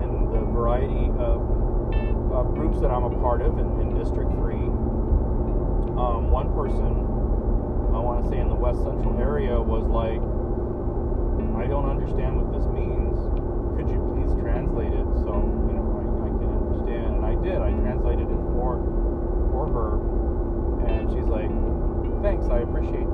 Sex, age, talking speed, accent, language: male, 30-49, 160 wpm, American, English